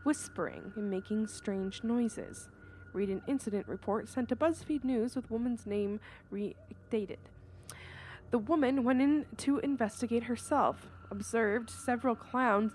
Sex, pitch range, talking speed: female, 200-260 Hz, 125 wpm